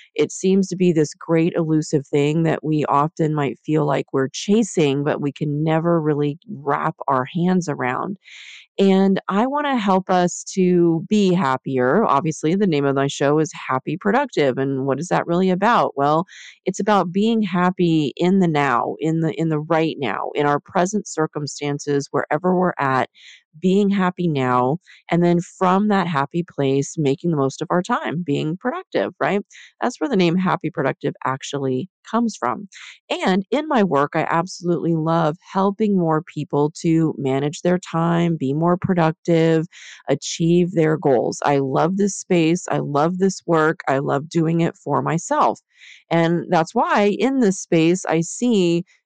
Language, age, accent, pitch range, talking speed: English, 30-49, American, 145-185 Hz, 170 wpm